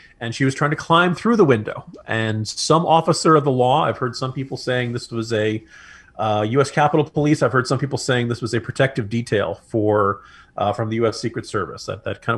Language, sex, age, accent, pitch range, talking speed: English, male, 40-59, American, 110-140 Hz, 220 wpm